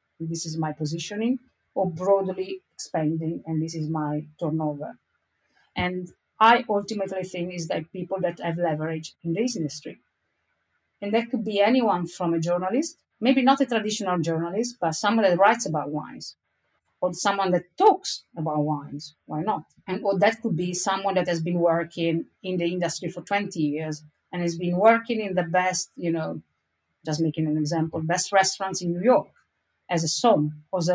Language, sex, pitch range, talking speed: English, female, 160-195 Hz, 175 wpm